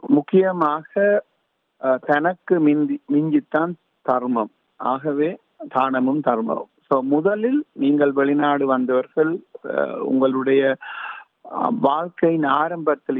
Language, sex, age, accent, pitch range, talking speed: Tamil, male, 50-69, native, 135-195 Hz, 75 wpm